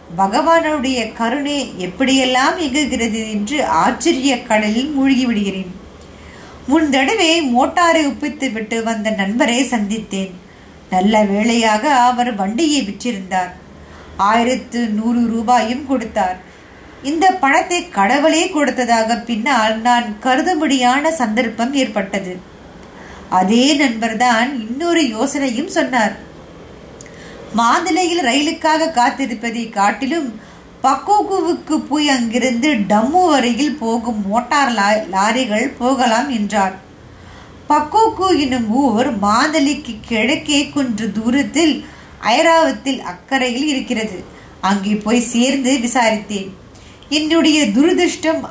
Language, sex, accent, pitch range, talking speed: Tamil, female, native, 220-290 Hz, 85 wpm